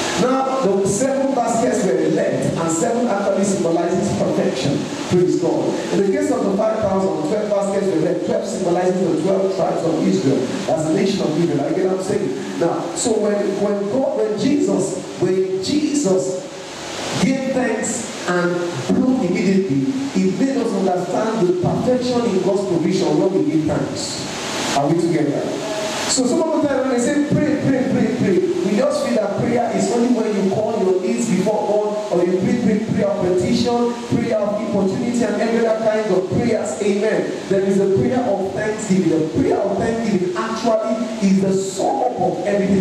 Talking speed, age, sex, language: 180 wpm, 40-59, male, English